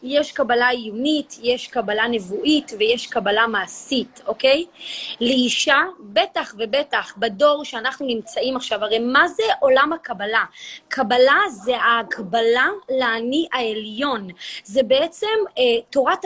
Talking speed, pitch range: 115 wpm, 235-320 Hz